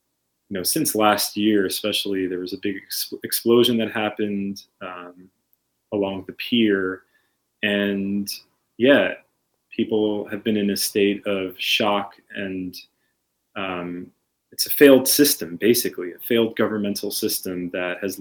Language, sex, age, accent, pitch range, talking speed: English, male, 30-49, American, 95-110 Hz, 130 wpm